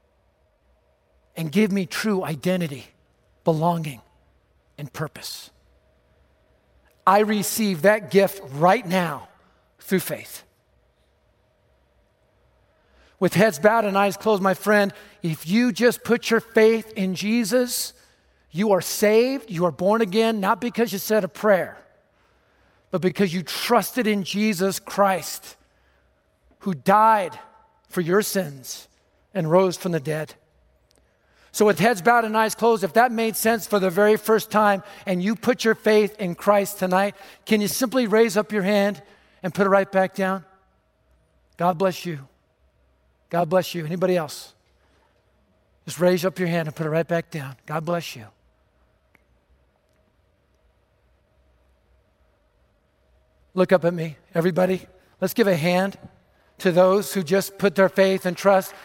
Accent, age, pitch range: American, 50-69, 160-210 Hz